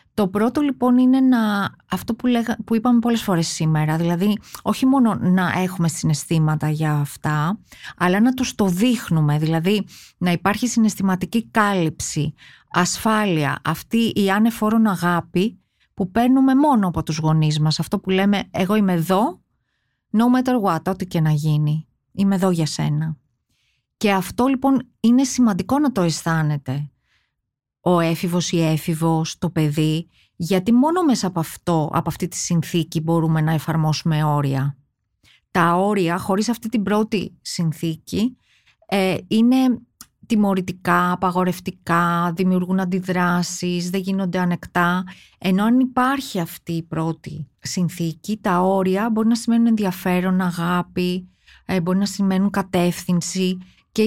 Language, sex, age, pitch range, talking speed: Greek, female, 30-49, 160-215 Hz, 130 wpm